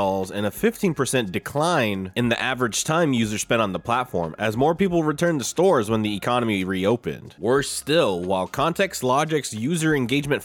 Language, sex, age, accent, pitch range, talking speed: English, male, 20-39, American, 110-145 Hz, 170 wpm